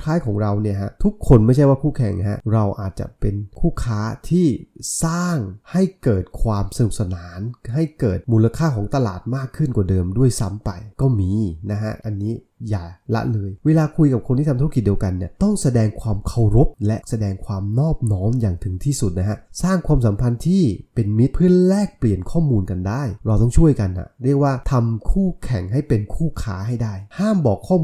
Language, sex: Thai, male